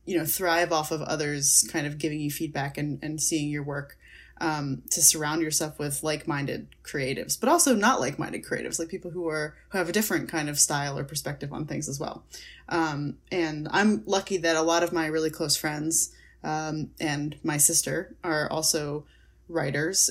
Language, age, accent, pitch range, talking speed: English, 20-39, American, 150-175 Hz, 190 wpm